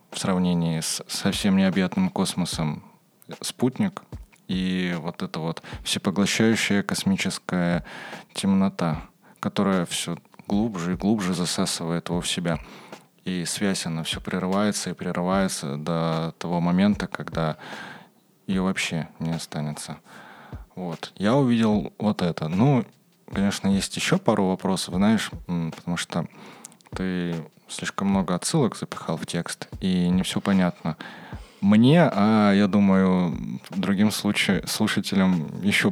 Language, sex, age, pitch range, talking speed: Russian, male, 20-39, 90-105 Hz, 115 wpm